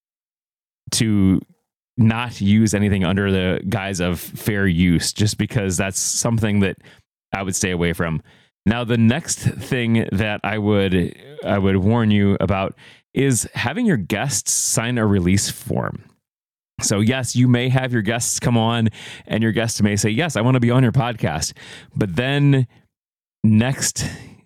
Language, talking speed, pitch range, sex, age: English, 160 wpm, 100-125 Hz, male, 30-49